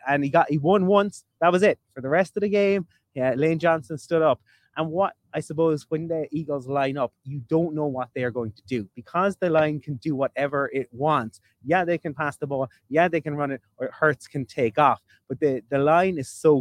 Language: English